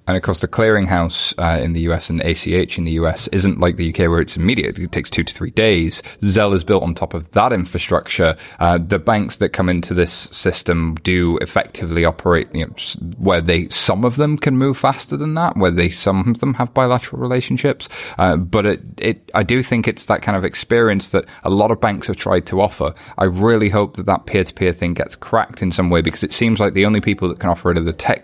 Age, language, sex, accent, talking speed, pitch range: 20-39, English, male, British, 240 wpm, 90-115 Hz